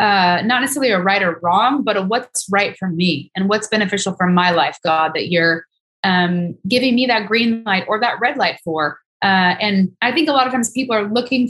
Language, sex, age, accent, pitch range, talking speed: English, female, 20-39, American, 190-230 Hz, 230 wpm